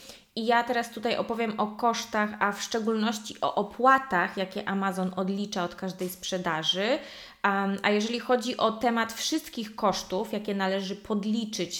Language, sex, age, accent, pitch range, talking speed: Polish, female, 20-39, native, 195-235 Hz, 140 wpm